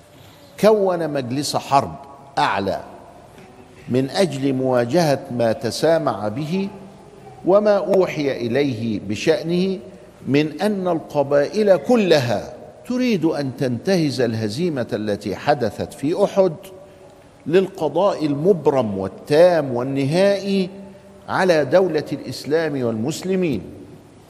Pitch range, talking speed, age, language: 120-185 Hz, 85 wpm, 50-69, Arabic